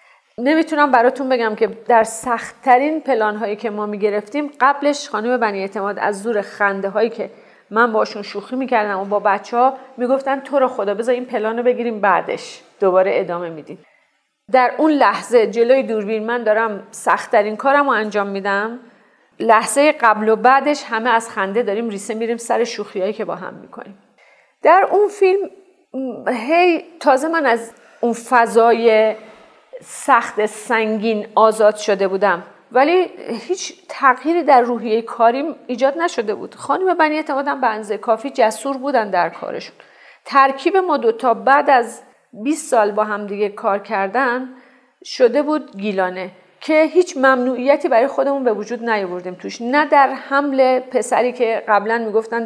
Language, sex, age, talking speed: Persian, female, 40-59, 150 wpm